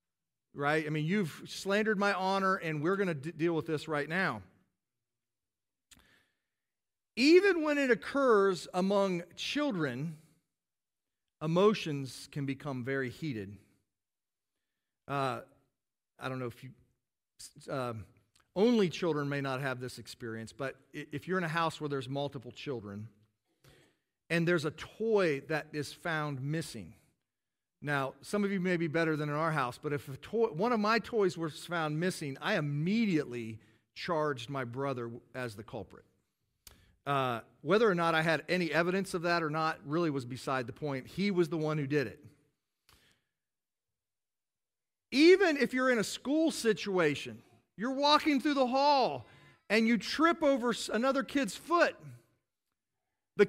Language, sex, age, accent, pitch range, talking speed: English, male, 40-59, American, 130-200 Hz, 145 wpm